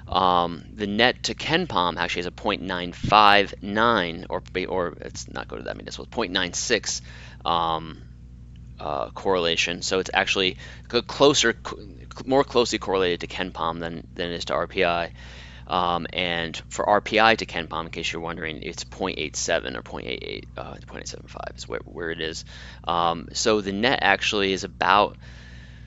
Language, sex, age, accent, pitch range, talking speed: English, male, 30-49, American, 65-100 Hz, 150 wpm